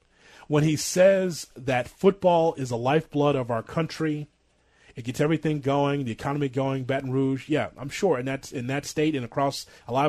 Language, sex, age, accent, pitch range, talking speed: English, male, 30-49, American, 125-165 Hz, 190 wpm